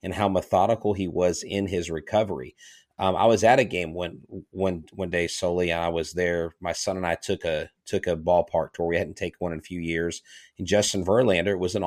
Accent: American